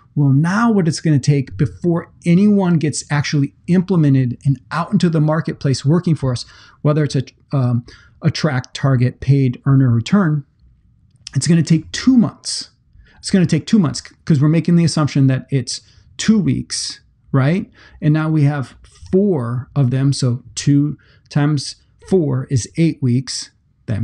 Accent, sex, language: American, male, English